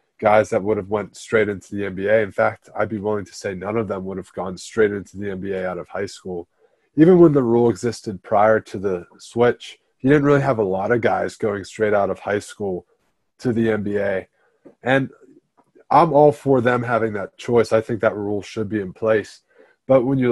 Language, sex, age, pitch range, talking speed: English, male, 20-39, 105-125 Hz, 220 wpm